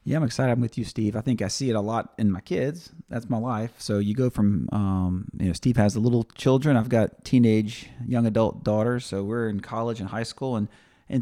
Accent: American